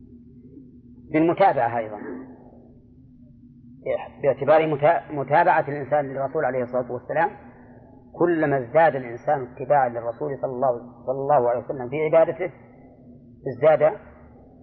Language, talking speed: Arabic, 85 wpm